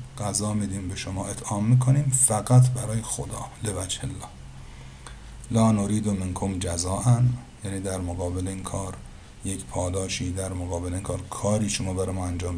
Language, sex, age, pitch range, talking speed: Persian, male, 50-69, 95-115 Hz, 150 wpm